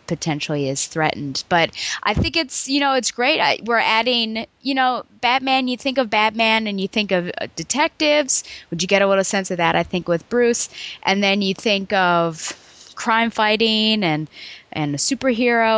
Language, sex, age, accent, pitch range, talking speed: English, female, 20-39, American, 165-220 Hz, 185 wpm